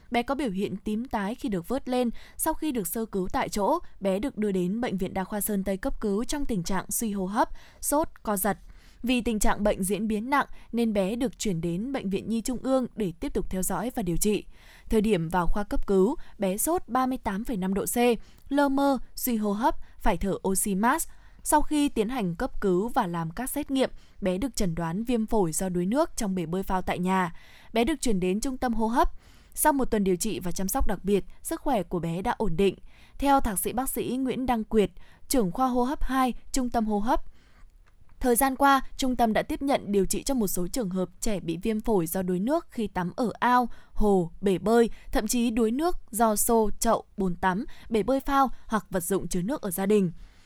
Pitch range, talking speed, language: 195-255 Hz, 240 wpm, Vietnamese